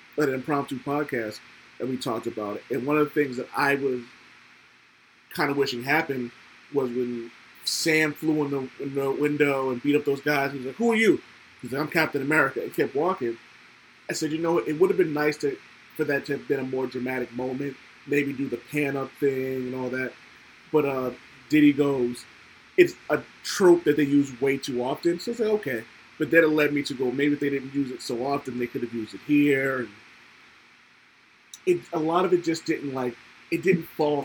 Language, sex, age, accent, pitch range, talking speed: English, male, 30-49, American, 125-150 Hz, 225 wpm